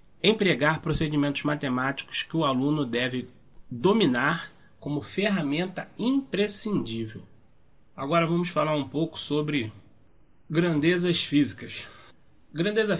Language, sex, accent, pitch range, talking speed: Portuguese, male, Brazilian, 130-160 Hz, 90 wpm